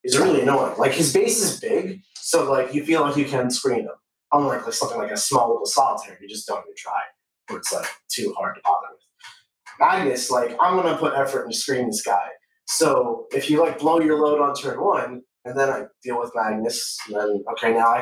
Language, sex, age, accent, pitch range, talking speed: English, male, 20-39, American, 125-195 Hz, 225 wpm